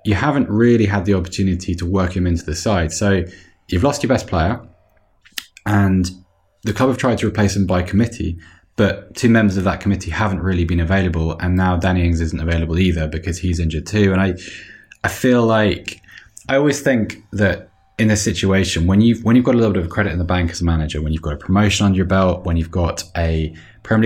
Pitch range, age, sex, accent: 85-110 Hz, 20-39, male, British